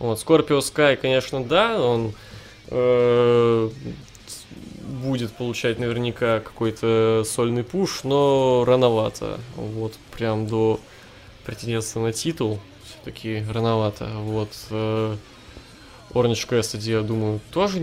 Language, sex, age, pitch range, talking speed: Russian, male, 20-39, 110-130 Hz, 90 wpm